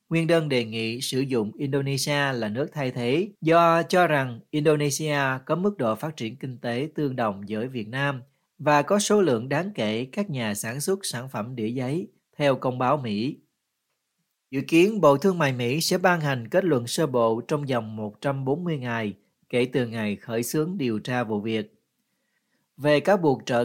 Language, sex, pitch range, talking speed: Vietnamese, male, 120-155 Hz, 190 wpm